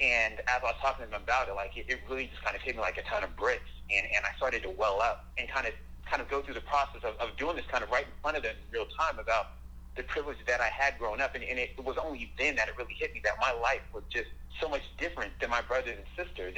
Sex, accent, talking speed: male, American, 310 wpm